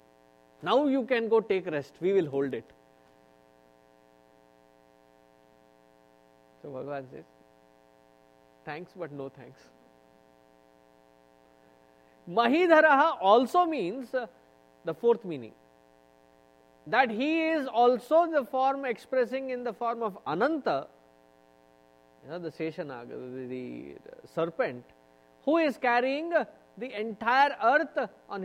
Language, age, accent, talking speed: English, 30-49, Indian, 95 wpm